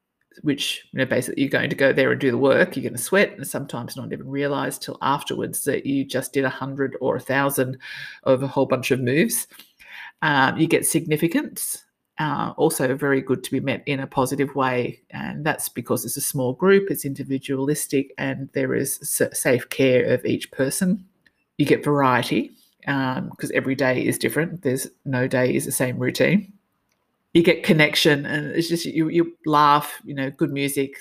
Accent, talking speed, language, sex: Australian, 195 wpm, English, female